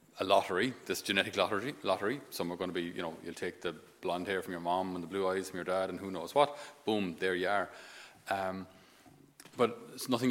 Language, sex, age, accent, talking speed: English, male, 30-49, Irish, 235 wpm